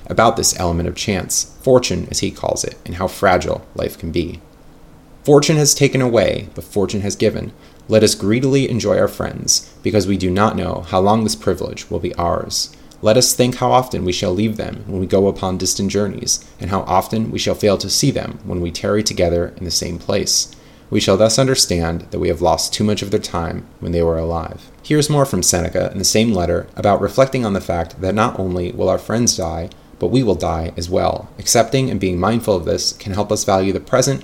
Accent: American